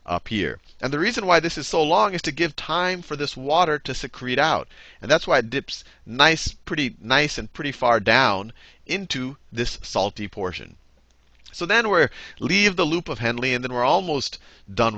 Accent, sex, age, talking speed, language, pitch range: American, male, 40-59, 195 wpm, English, 80-125 Hz